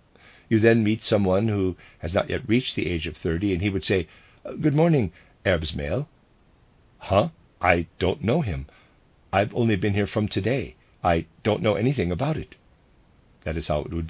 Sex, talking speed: male, 180 wpm